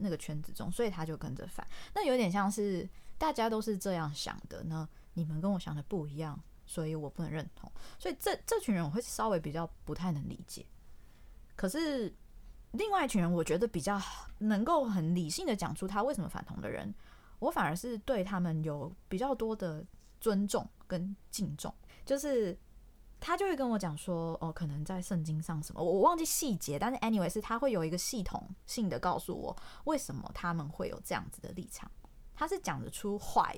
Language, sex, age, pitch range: Chinese, female, 20-39, 160-220 Hz